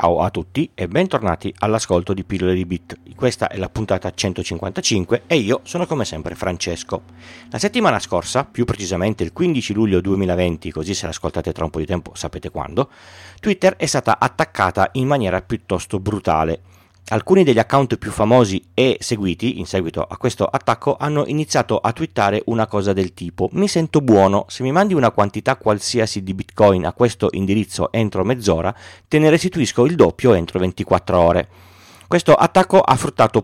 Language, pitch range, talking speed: Italian, 95-125 Hz, 170 wpm